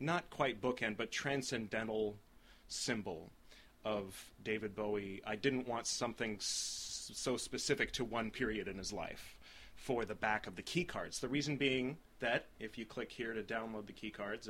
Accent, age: American, 30-49